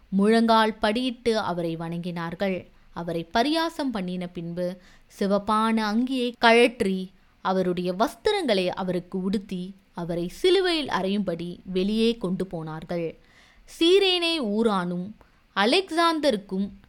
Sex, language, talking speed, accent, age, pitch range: female, Tamil, 85 wpm, native, 20-39, 175-235 Hz